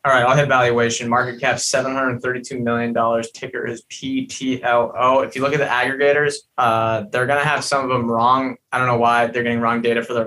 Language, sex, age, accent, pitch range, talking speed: English, male, 20-39, American, 120-140 Hz, 215 wpm